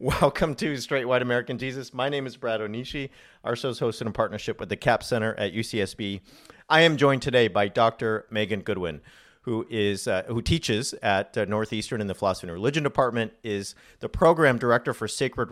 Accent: American